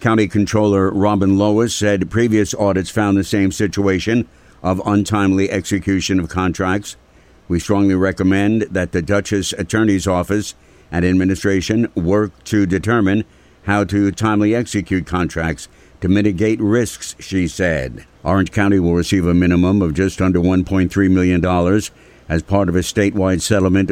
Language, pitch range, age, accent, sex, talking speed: English, 90-105 Hz, 60-79, American, male, 140 wpm